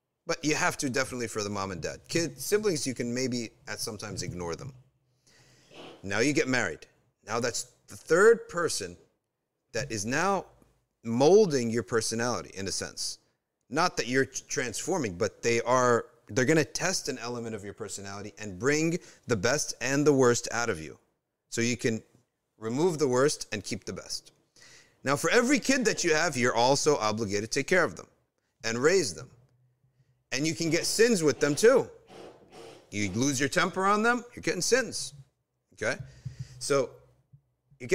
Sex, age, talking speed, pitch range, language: male, 40-59, 175 wpm, 120-155 Hz, English